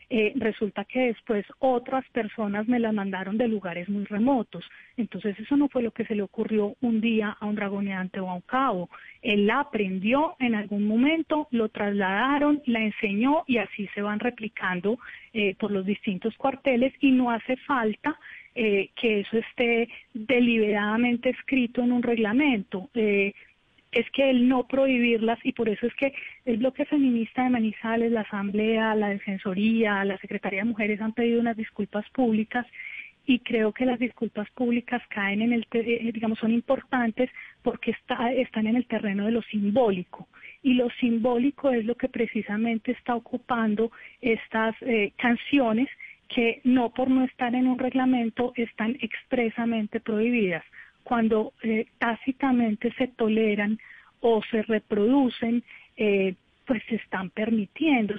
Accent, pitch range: Colombian, 210-250 Hz